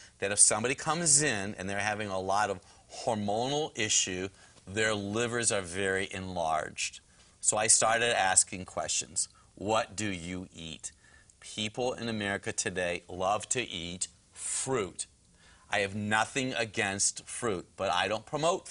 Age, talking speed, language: 40-59, 140 wpm, English